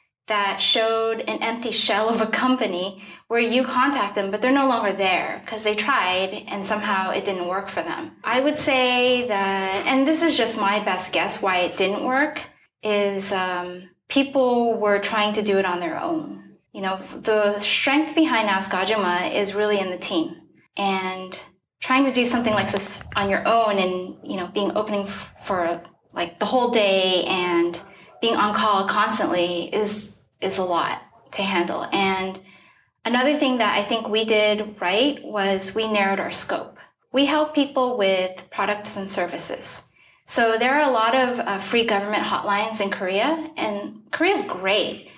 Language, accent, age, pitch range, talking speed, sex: English, American, 10-29, 190-235 Hz, 175 wpm, female